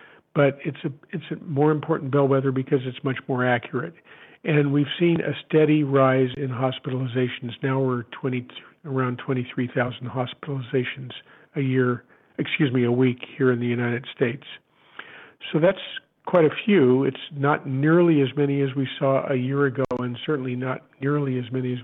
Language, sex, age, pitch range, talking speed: English, male, 50-69, 130-150 Hz, 170 wpm